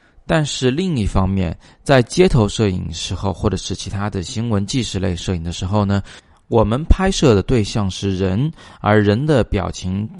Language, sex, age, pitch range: Chinese, male, 20-39, 95-115 Hz